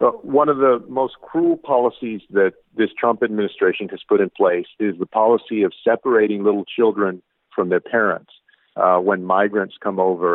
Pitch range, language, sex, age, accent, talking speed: 100-155 Hz, English, male, 50-69, American, 170 wpm